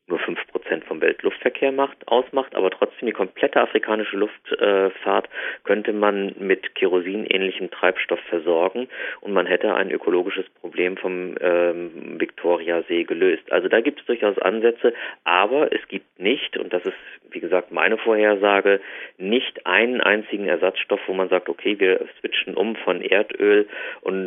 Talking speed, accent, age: 150 wpm, German, 40-59